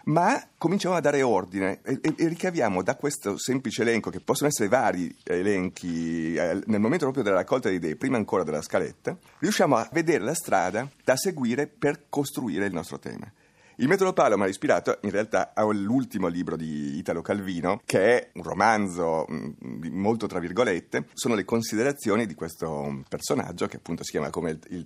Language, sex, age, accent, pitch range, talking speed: Italian, male, 30-49, native, 90-145 Hz, 175 wpm